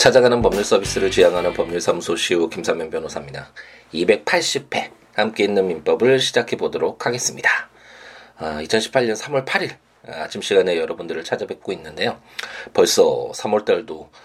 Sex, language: male, Korean